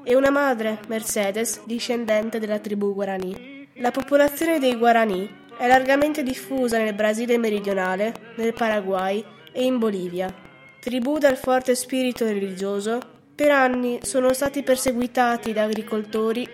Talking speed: 125 wpm